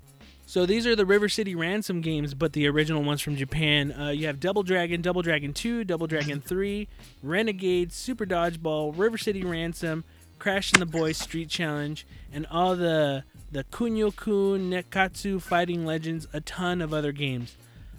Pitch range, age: 150-195 Hz, 20-39